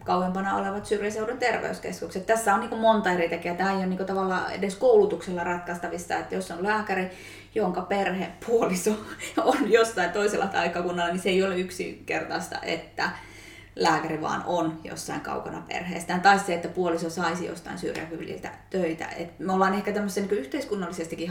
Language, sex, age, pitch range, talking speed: Finnish, female, 20-39, 170-195 Hz, 155 wpm